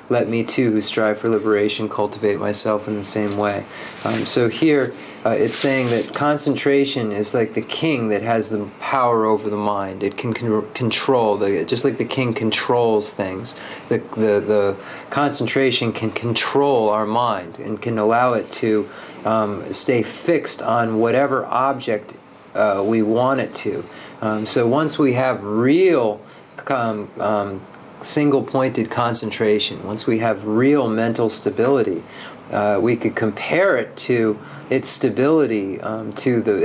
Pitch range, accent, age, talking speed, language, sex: 105-120 Hz, American, 30-49, 155 wpm, English, male